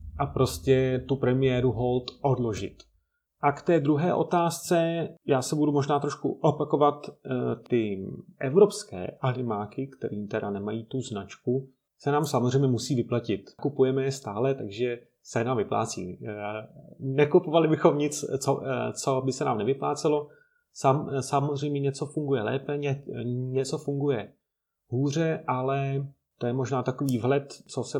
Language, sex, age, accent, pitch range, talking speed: Czech, male, 30-49, native, 125-150 Hz, 140 wpm